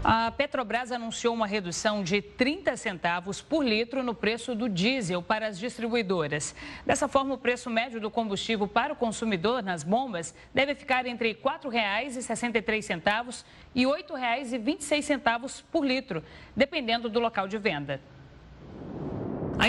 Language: Portuguese